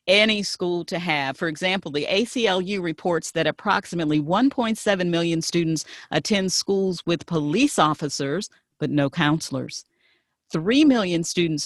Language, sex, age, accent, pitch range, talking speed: English, female, 50-69, American, 160-215 Hz, 130 wpm